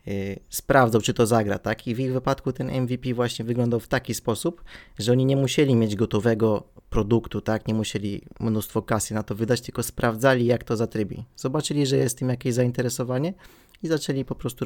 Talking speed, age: 190 wpm, 20-39